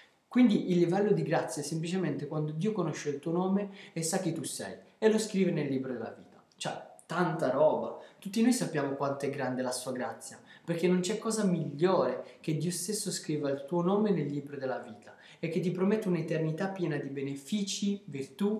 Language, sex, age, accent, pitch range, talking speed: Italian, male, 20-39, native, 145-195 Hz, 200 wpm